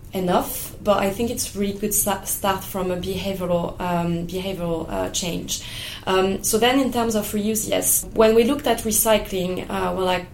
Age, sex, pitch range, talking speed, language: 20-39, female, 185-215 Hz, 180 wpm, English